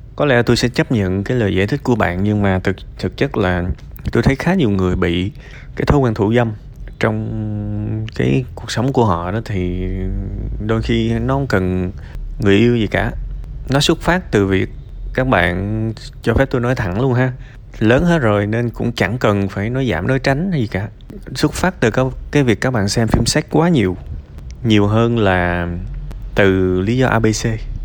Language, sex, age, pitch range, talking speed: Vietnamese, male, 20-39, 100-125 Hz, 200 wpm